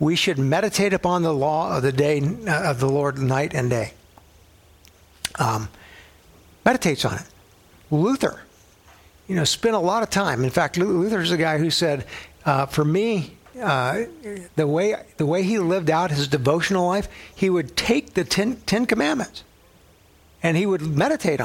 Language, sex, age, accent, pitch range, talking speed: English, male, 60-79, American, 110-170 Hz, 165 wpm